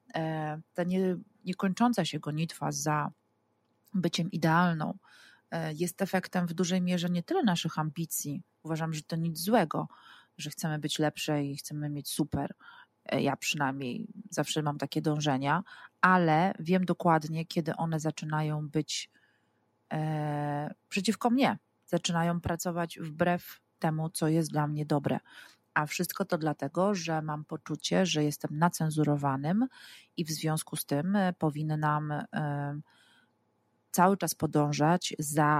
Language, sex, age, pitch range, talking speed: Polish, female, 30-49, 155-190 Hz, 125 wpm